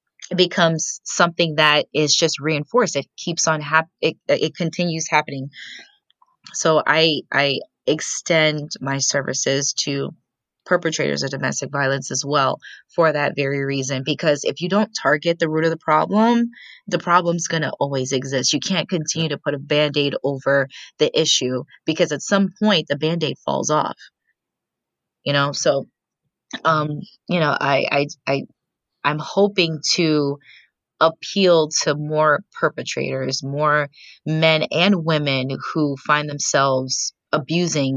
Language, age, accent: English, 20-39, American